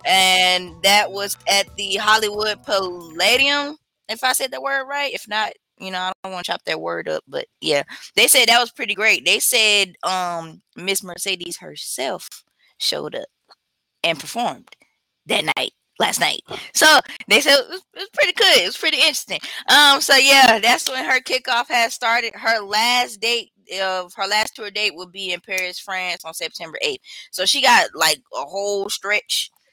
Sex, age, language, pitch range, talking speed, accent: female, 10-29, English, 170-220 Hz, 185 wpm, American